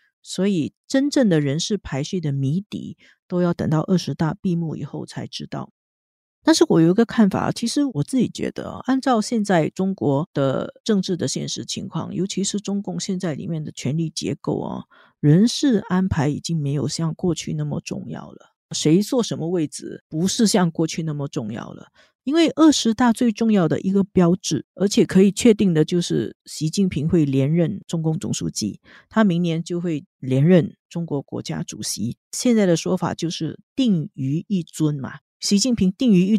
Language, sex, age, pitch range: Chinese, female, 50-69, 160-205 Hz